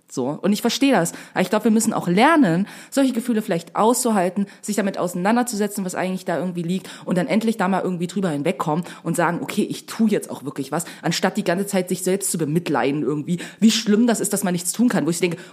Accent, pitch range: German, 155-205 Hz